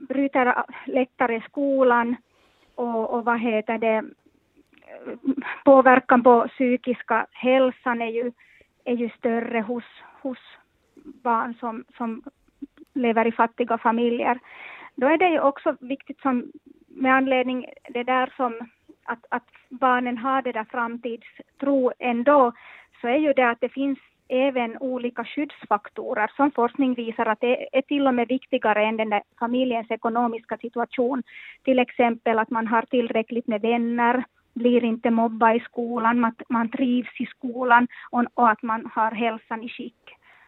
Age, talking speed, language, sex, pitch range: 30-49, 140 wpm, Swedish, female, 230-265 Hz